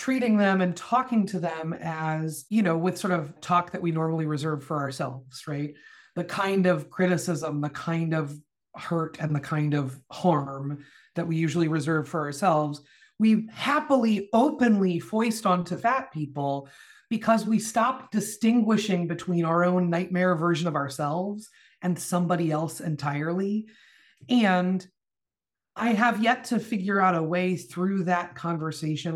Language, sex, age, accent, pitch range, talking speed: English, female, 30-49, American, 160-205 Hz, 150 wpm